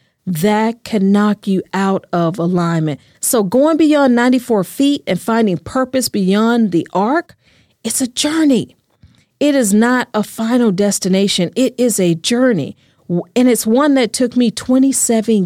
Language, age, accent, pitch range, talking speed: English, 40-59, American, 165-245 Hz, 150 wpm